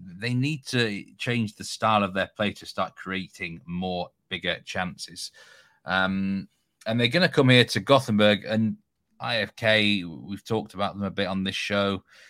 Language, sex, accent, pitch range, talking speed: English, male, British, 90-110 Hz, 170 wpm